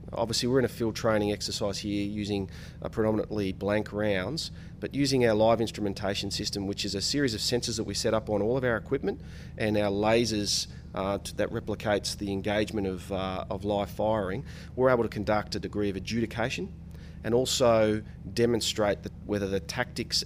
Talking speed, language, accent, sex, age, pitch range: 185 wpm, English, Australian, male, 30-49, 95-115 Hz